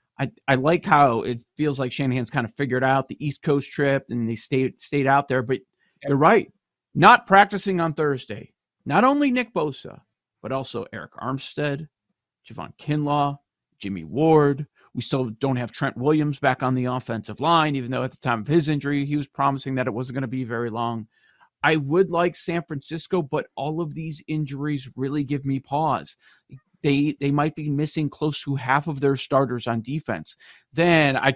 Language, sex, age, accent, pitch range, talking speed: English, male, 40-59, American, 125-150 Hz, 190 wpm